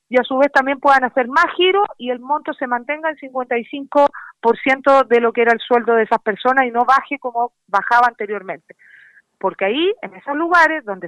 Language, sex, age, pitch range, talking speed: Spanish, female, 40-59, 225-310 Hz, 200 wpm